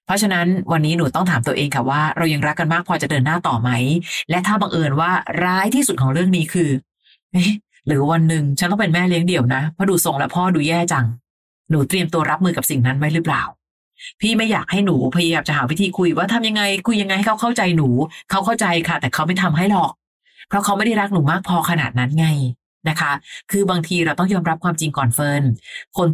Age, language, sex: 30-49, Thai, female